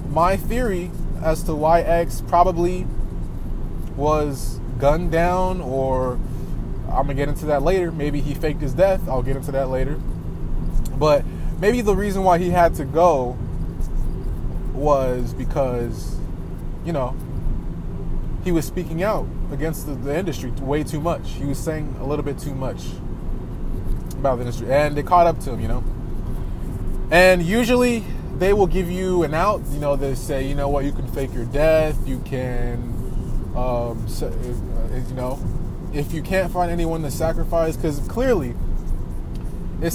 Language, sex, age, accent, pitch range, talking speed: English, male, 20-39, American, 125-170 Hz, 160 wpm